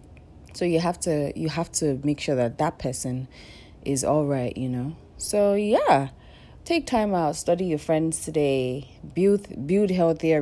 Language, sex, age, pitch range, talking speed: English, female, 30-49, 130-175 Hz, 165 wpm